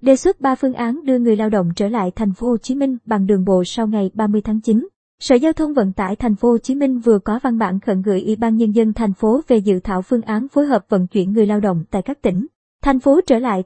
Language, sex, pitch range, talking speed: Vietnamese, male, 210-255 Hz, 285 wpm